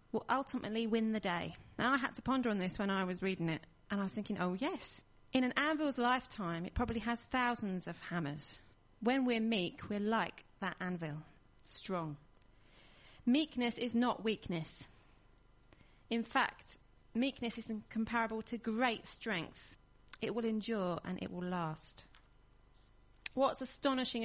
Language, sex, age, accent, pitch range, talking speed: English, female, 30-49, British, 165-235 Hz, 155 wpm